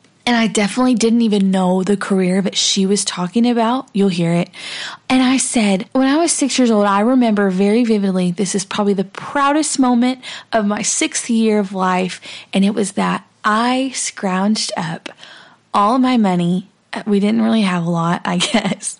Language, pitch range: English, 190-230 Hz